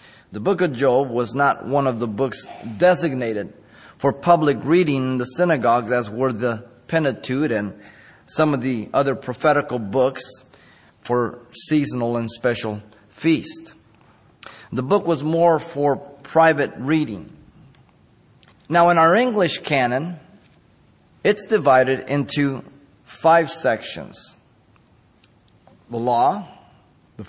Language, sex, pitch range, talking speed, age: English, male, 120-160 Hz, 115 wpm, 30-49